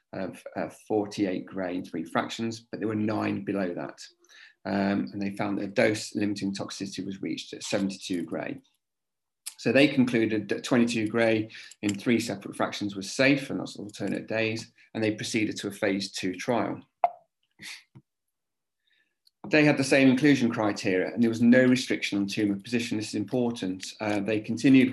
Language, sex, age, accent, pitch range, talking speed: English, male, 30-49, British, 100-130 Hz, 170 wpm